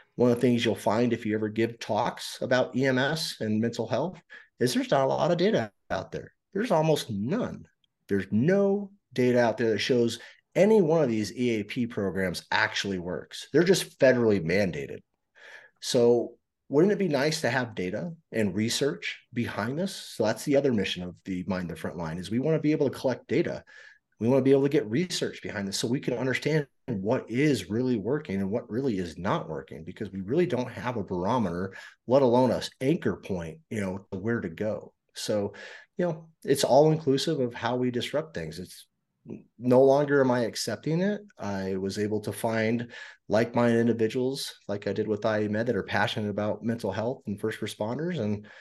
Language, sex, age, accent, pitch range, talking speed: English, male, 30-49, American, 105-135 Hz, 200 wpm